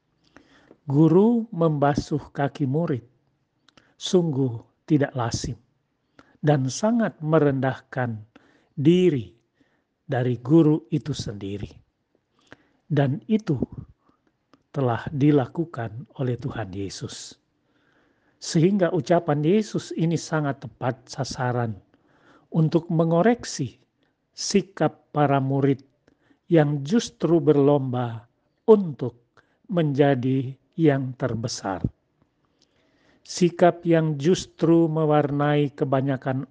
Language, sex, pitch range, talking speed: Indonesian, male, 125-160 Hz, 75 wpm